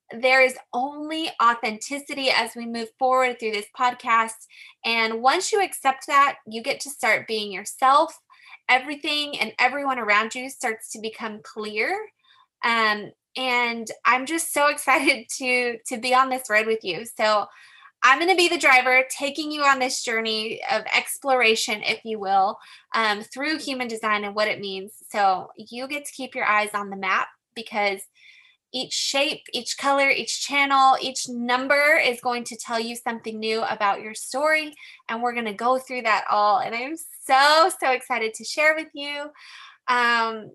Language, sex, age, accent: English, female, 20-39, American